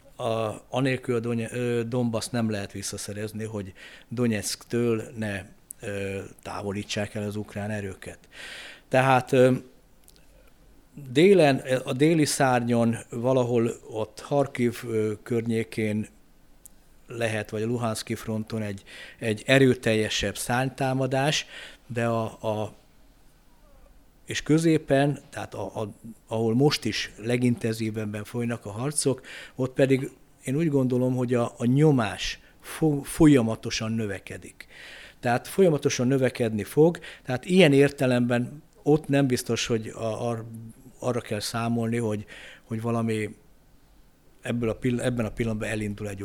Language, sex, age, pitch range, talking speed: Hungarian, male, 50-69, 110-130 Hz, 115 wpm